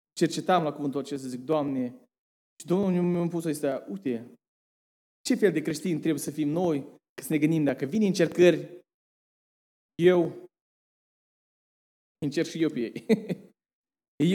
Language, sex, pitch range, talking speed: Romanian, male, 145-180 Hz, 145 wpm